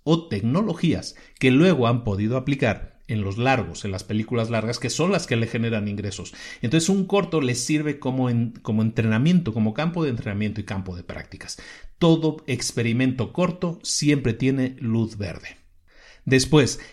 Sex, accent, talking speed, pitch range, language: male, Mexican, 160 wpm, 115-150 Hz, Spanish